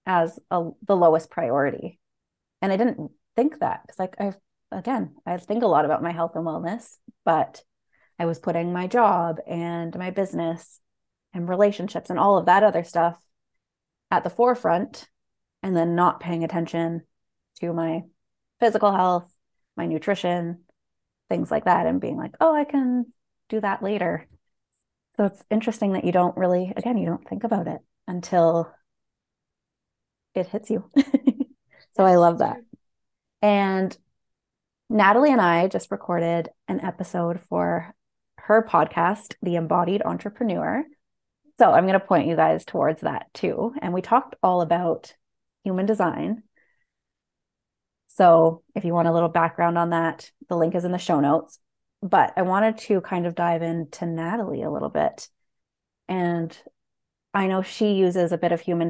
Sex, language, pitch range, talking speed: female, English, 170-210 Hz, 160 wpm